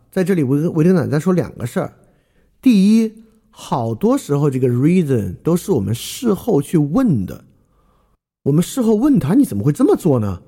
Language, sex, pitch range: Chinese, male, 125-190 Hz